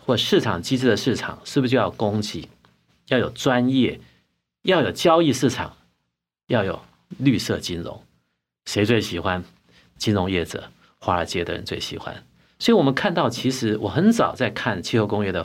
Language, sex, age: Chinese, male, 50-69